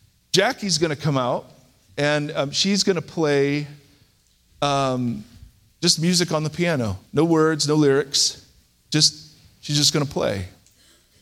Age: 40-59